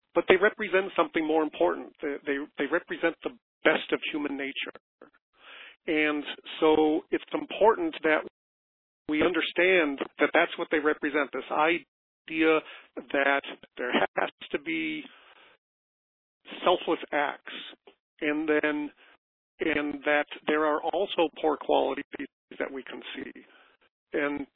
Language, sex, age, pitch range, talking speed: English, male, 50-69, 145-175 Hz, 125 wpm